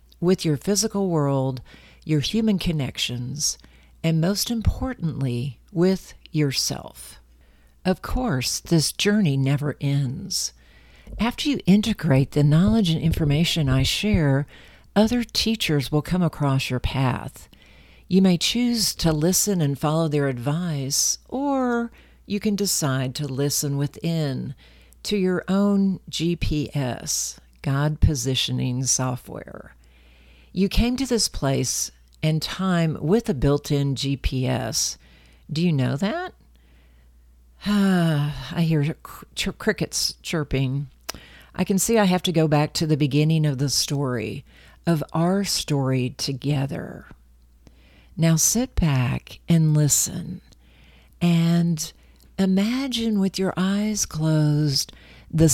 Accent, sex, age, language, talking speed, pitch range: American, female, 50-69, English, 115 wpm, 130-180 Hz